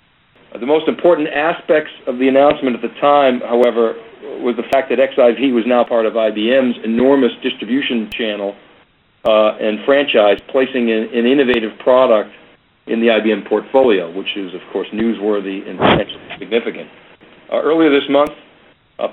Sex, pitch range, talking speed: male, 110-135 Hz, 150 wpm